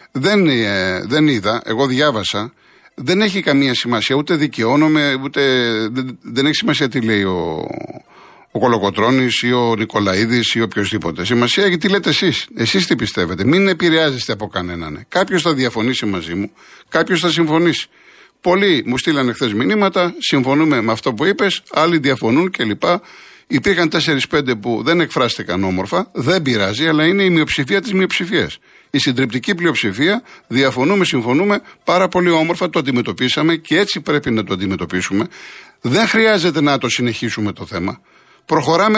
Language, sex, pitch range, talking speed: Greek, male, 115-180 Hz, 150 wpm